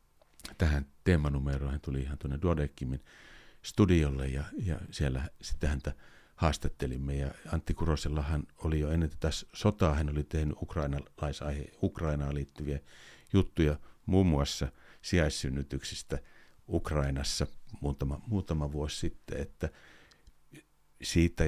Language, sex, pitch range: Finnish, male, 75-90 Hz